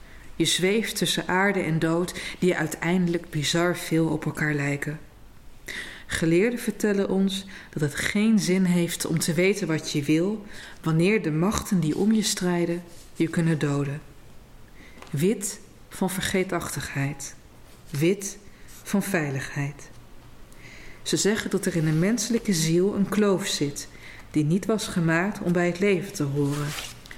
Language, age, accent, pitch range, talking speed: Dutch, 40-59, Dutch, 150-190 Hz, 140 wpm